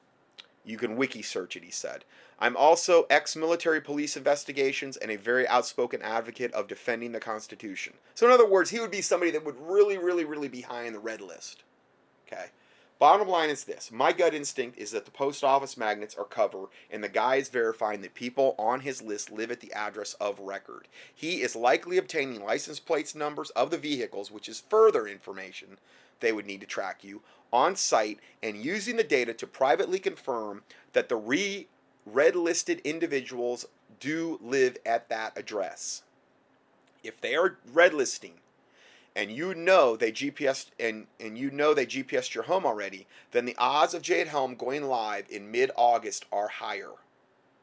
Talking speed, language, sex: 175 wpm, English, male